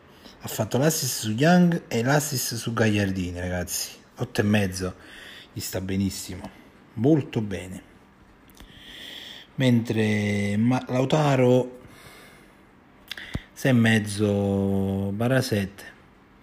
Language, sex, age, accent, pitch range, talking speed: Italian, male, 30-49, native, 95-130 Hz, 70 wpm